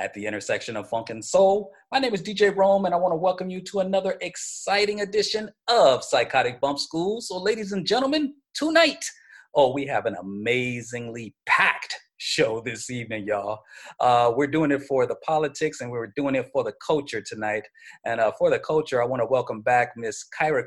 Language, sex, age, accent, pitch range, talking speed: English, male, 30-49, American, 115-190 Hz, 195 wpm